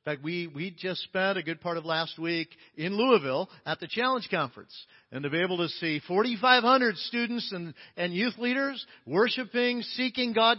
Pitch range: 135-205 Hz